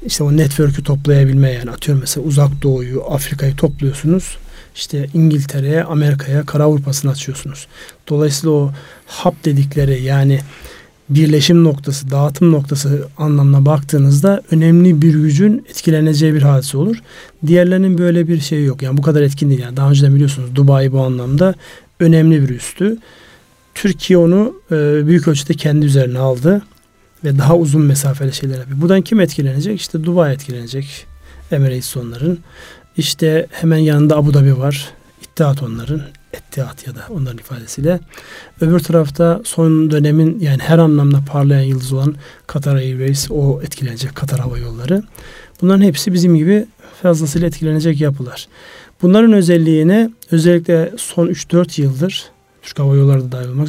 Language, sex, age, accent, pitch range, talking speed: Turkish, male, 40-59, native, 135-165 Hz, 140 wpm